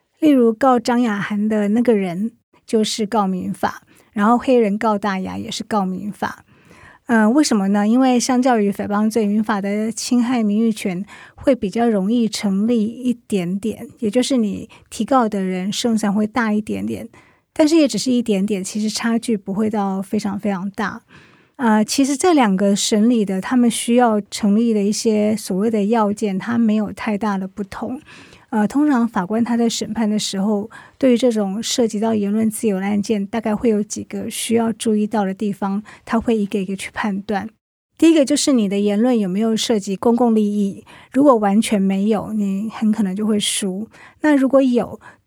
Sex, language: female, Chinese